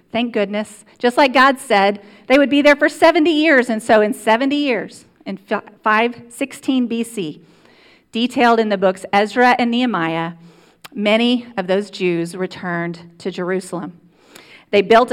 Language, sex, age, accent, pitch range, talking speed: English, female, 40-59, American, 190-255 Hz, 145 wpm